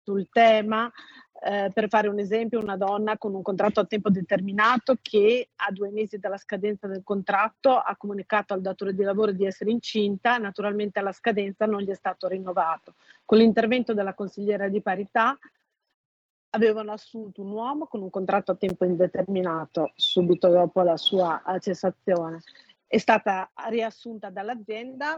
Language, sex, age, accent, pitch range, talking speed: Italian, female, 40-59, native, 195-230 Hz, 155 wpm